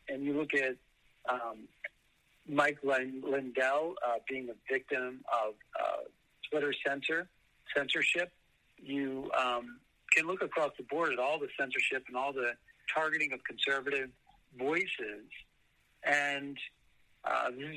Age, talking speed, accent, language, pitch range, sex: 60-79, 125 wpm, American, English, 130-160 Hz, male